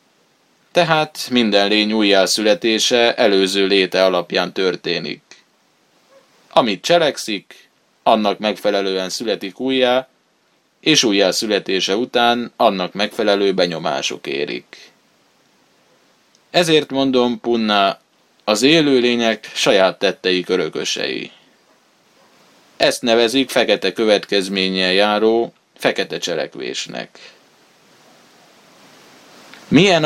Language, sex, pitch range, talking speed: Hungarian, male, 95-115 Hz, 75 wpm